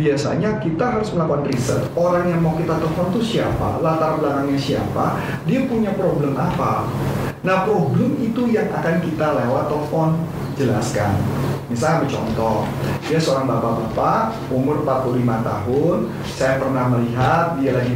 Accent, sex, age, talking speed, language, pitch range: native, male, 30-49, 135 wpm, Indonesian, 125-155 Hz